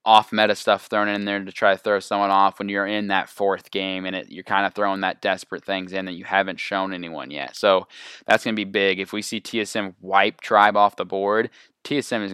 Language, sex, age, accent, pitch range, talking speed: English, male, 20-39, American, 95-105 Hz, 250 wpm